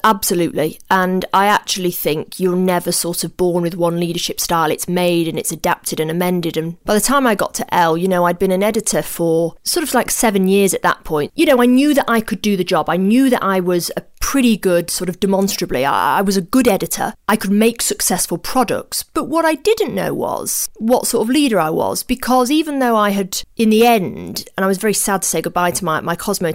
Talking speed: 245 wpm